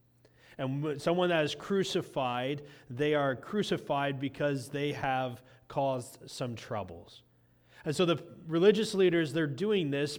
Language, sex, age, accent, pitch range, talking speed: English, male, 30-49, American, 125-155 Hz, 130 wpm